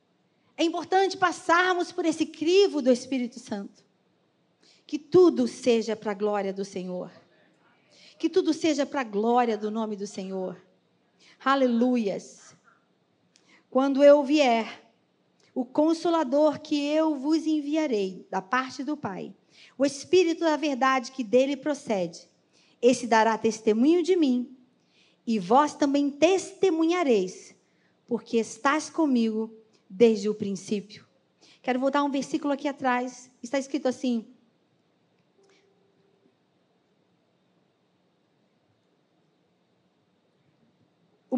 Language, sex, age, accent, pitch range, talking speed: Portuguese, female, 40-59, Brazilian, 215-285 Hz, 105 wpm